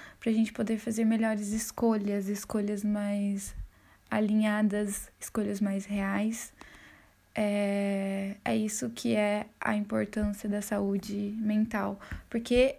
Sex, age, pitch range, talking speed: female, 10-29, 200-225 Hz, 110 wpm